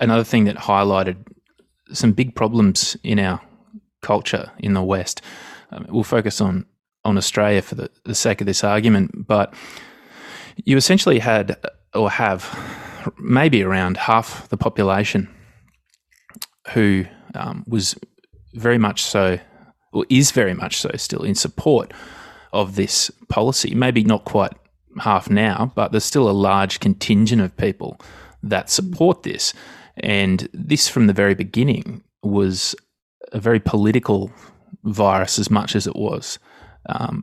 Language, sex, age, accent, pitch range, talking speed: English, male, 20-39, Australian, 95-115 Hz, 140 wpm